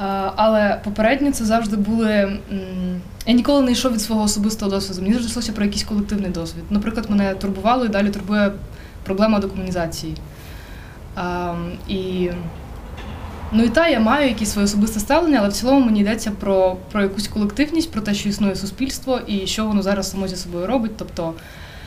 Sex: female